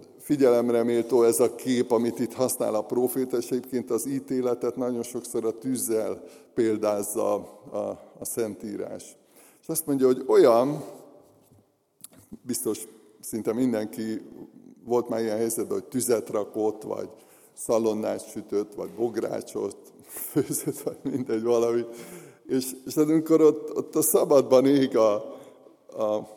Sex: male